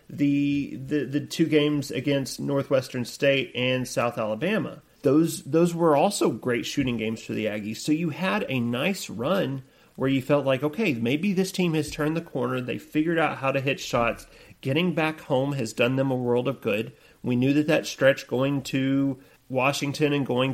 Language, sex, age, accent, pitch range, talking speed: English, male, 40-59, American, 125-150 Hz, 195 wpm